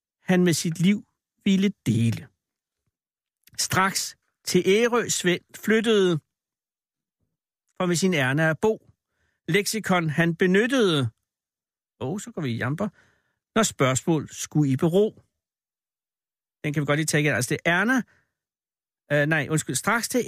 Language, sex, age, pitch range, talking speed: Danish, male, 60-79, 145-200 Hz, 140 wpm